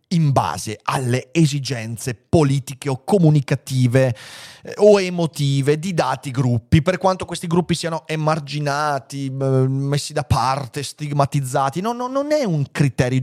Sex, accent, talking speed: male, native, 120 wpm